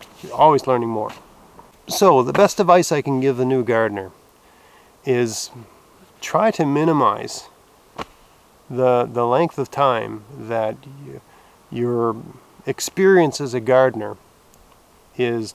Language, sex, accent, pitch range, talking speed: English, male, American, 115-150 Hz, 120 wpm